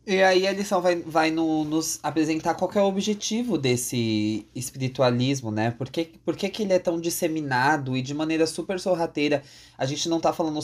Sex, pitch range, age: male, 125-170 Hz, 20-39